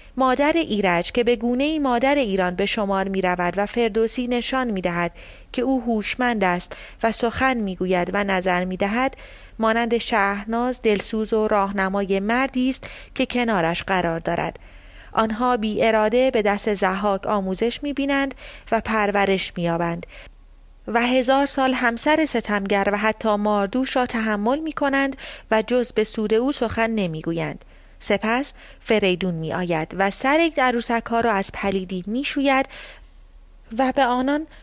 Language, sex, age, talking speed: Persian, female, 30-49, 150 wpm